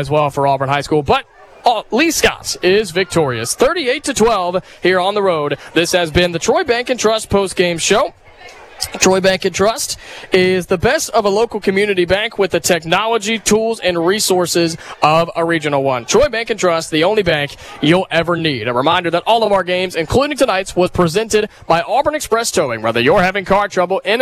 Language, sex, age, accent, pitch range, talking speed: English, male, 20-39, American, 165-210 Hz, 205 wpm